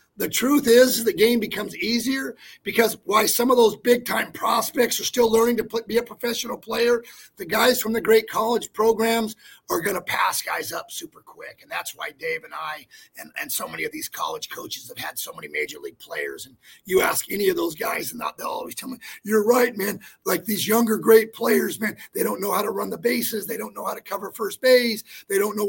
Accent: American